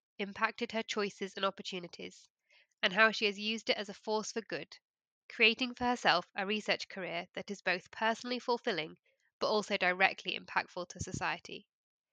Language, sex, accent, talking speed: English, female, British, 165 wpm